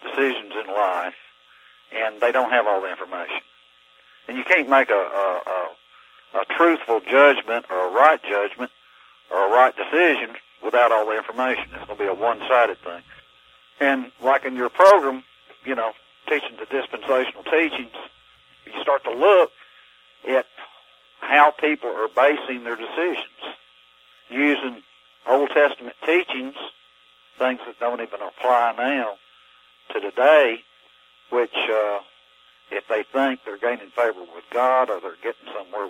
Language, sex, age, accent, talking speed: English, male, 60-79, American, 145 wpm